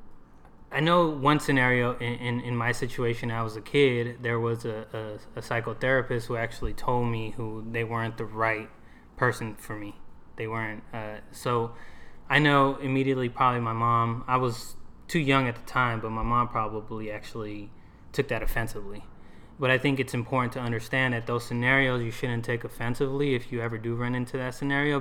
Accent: American